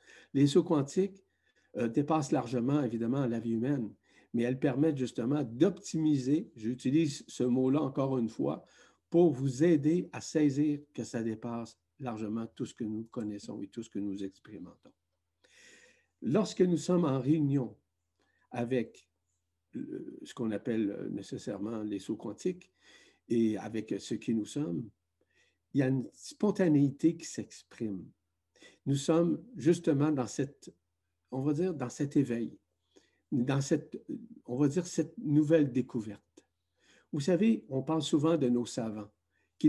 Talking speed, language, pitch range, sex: 145 wpm, French, 115-150 Hz, male